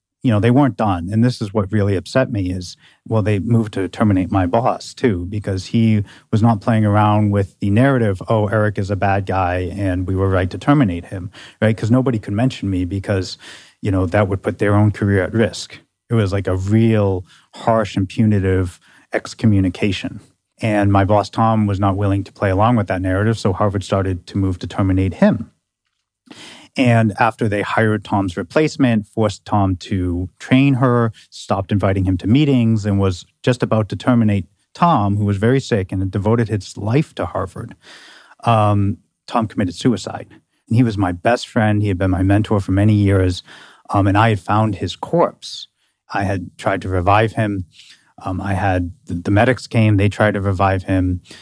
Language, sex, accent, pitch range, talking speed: English, male, American, 95-110 Hz, 195 wpm